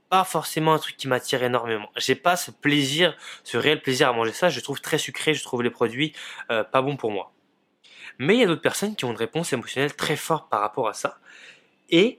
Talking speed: 235 wpm